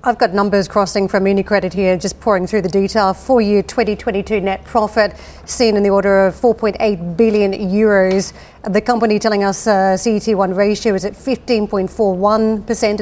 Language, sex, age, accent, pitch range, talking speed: English, female, 40-59, Australian, 195-220 Hz, 155 wpm